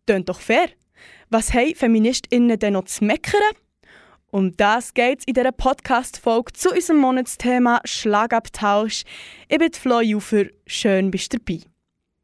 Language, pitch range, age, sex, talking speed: German, 205-270 Hz, 20-39, female, 135 wpm